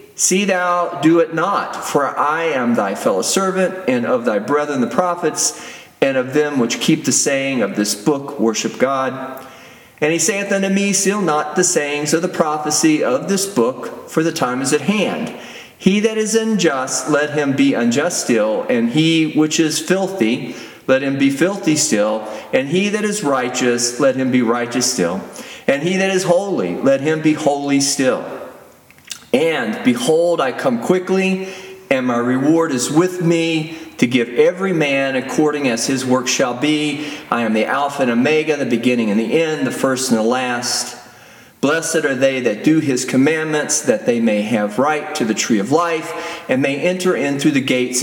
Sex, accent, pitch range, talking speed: male, American, 130-180 Hz, 185 wpm